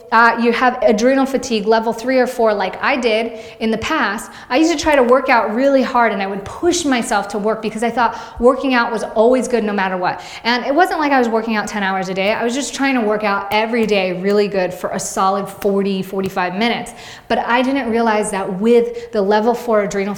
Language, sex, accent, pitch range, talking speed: English, female, American, 195-235 Hz, 240 wpm